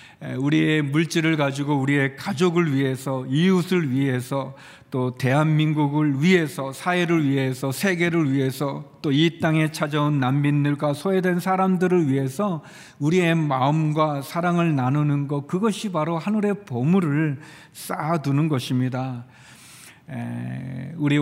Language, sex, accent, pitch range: Korean, male, native, 130-155 Hz